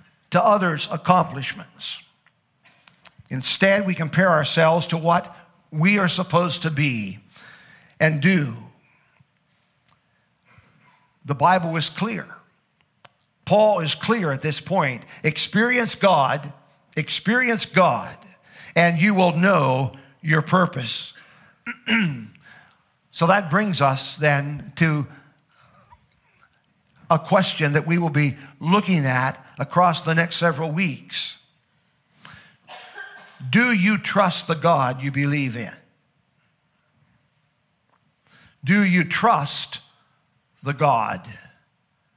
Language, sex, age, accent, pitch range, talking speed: English, male, 50-69, American, 145-190 Hz, 95 wpm